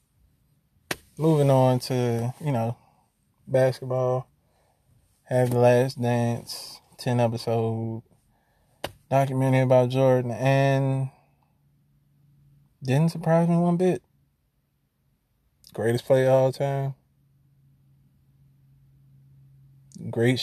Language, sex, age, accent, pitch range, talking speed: English, male, 20-39, American, 120-140 Hz, 80 wpm